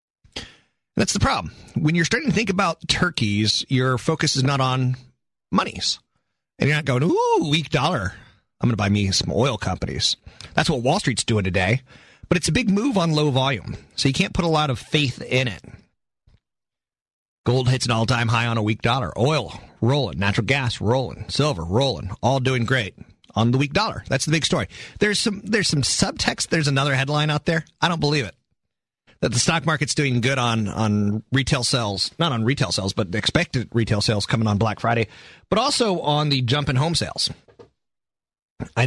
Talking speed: 195 wpm